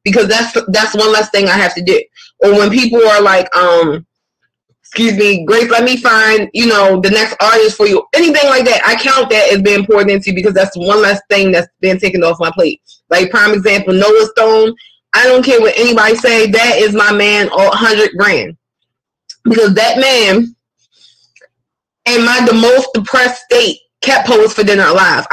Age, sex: 20-39, female